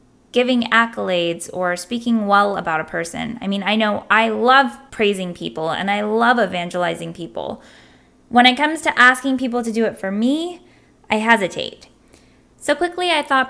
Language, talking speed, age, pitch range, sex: English, 170 wpm, 10-29, 200-255 Hz, female